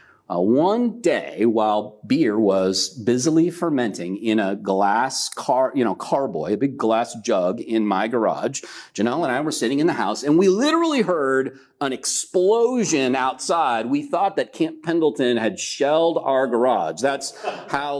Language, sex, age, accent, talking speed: English, male, 40-59, American, 160 wpm